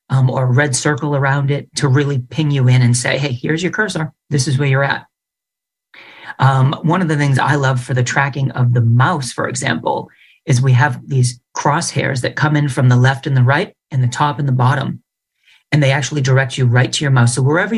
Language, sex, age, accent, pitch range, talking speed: English, male, 40-59, American, 130-155 Hz, 235 wpm